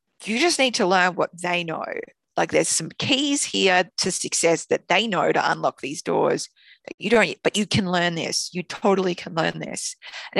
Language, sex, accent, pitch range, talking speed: English, female, Australian, 155-195 Hz, 210 wpm